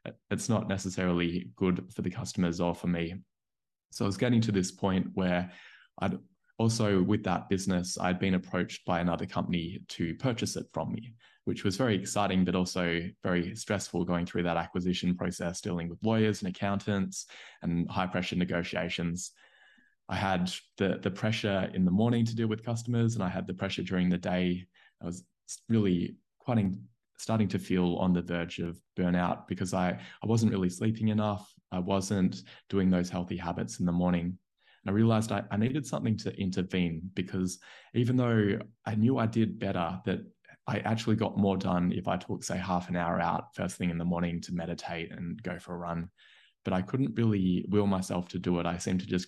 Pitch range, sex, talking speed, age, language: 90-110 Hz, male, 195 wpm, 20-39, English